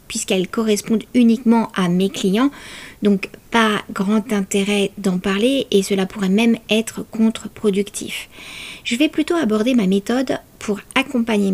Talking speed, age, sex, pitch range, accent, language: 135 wpm, 50-69, female, 200-250 Hz, French, French